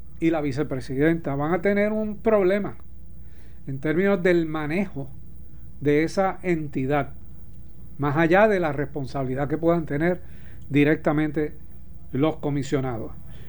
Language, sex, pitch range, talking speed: Spanish, male, 145-195 Hz, 115 wpm